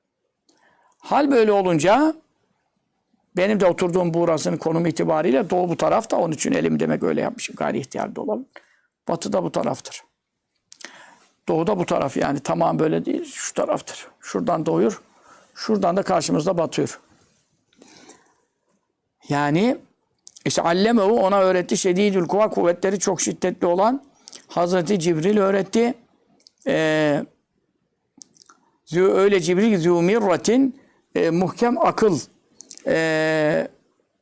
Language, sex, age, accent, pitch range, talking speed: Turkish, male, 60-79, native, 165-225 Hz, 110 wpm